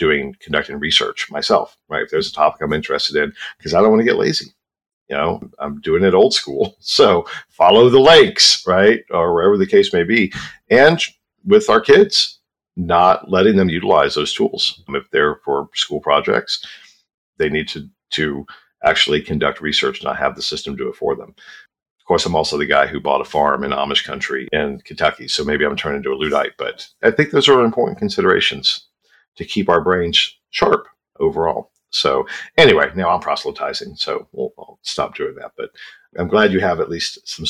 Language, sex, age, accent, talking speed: English, male, 50-69, American, 195 wpm